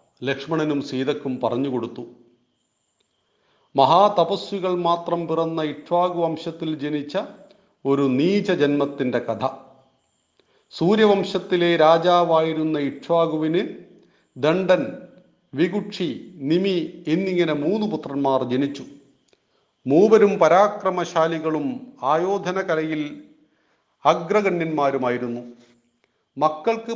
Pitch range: 140-185 Hz